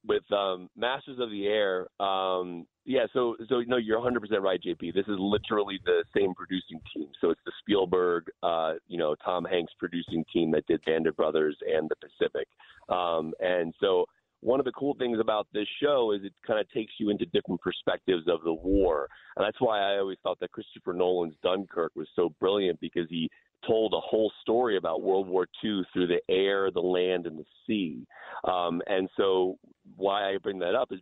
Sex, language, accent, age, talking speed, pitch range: male, English, American, 30-49, 200 wpm, 85-110 Hz